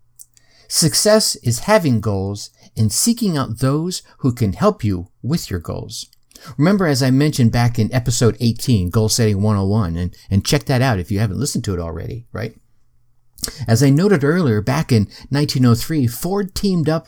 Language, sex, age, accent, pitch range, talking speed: English, male, 50-69, American, 110-150 Hz, 170 wpm